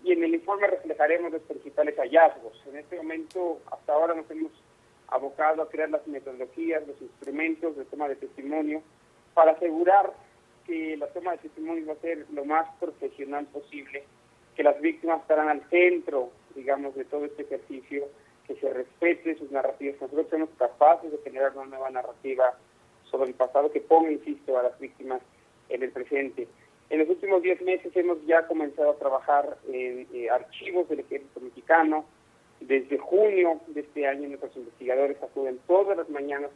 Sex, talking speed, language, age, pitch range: male, 170 wpm, Spanish, 40-59, 135-165 Hz